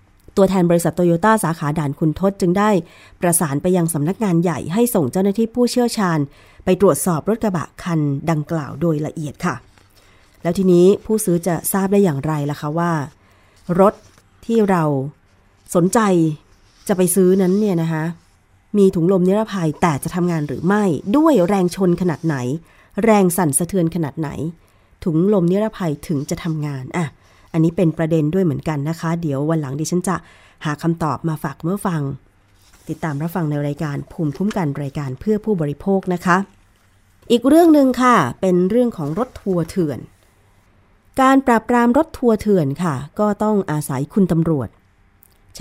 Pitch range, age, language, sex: 145-195 Hz, 20-39, Thai, female